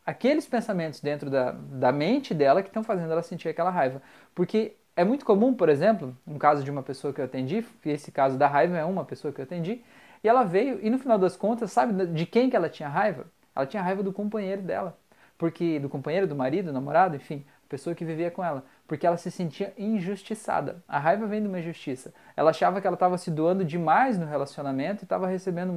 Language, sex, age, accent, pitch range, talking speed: Portuguese, male, 20-39, Brazilian, 150-205 Hz, 225 wpm